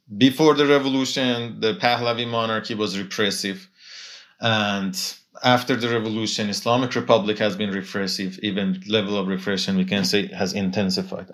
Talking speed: 140 wpm